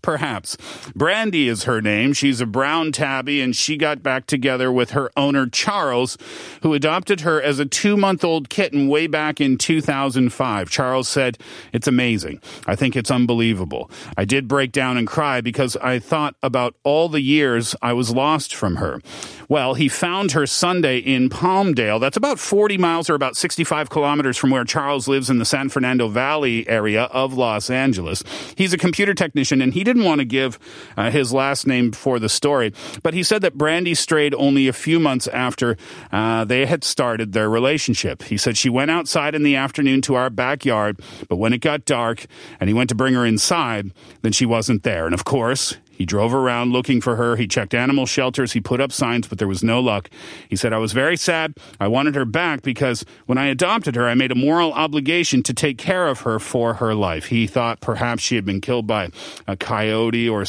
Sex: male